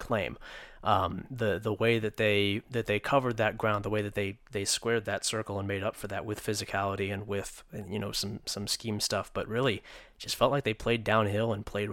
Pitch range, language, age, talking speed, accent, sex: 100-120 Hz, English, 20-39, 230 wpm, American, male